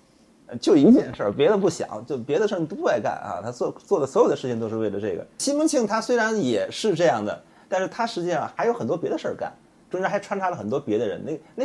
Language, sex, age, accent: Chinese, male, 30-49, native